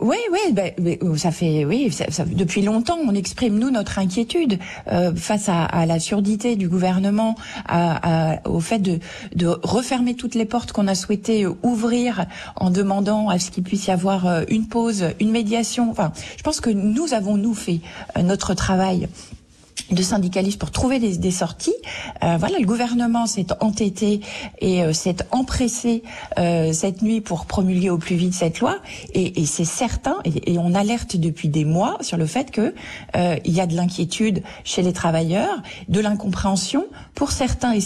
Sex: female